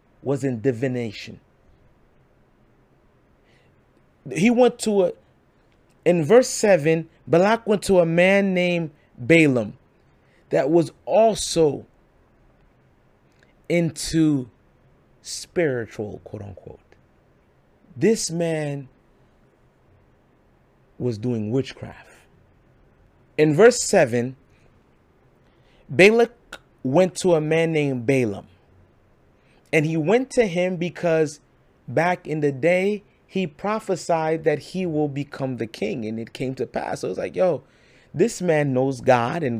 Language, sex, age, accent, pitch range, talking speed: English, male, 30-49, American, 135-185 Hz, 110 wpm